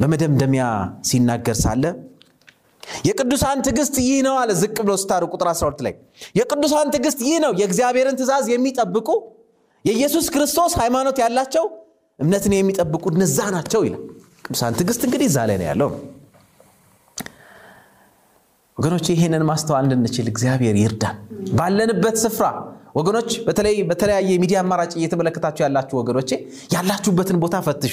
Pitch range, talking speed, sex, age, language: 165-265 Hz, 55 wpm, male, 30-49, Amharic